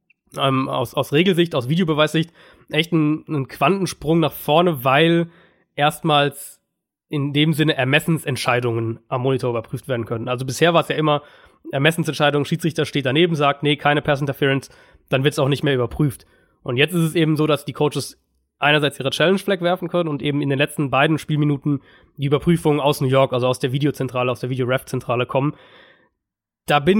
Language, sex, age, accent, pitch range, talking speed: German, male, 20-39, German, 135-165 Hz, 180 wpm